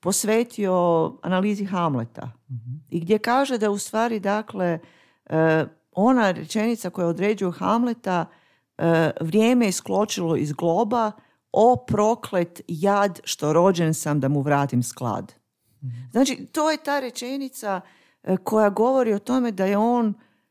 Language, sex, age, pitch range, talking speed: Croatian, female, 50-69, 155-215 Hz, 120 wpm